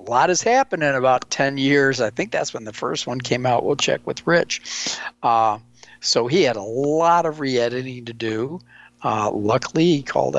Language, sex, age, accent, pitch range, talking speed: English, male, 50-69, American, 125-155 Hz, 200 wpm